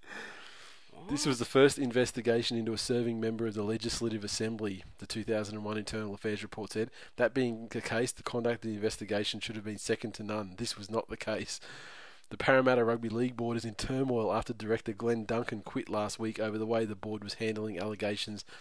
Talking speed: 200 wpm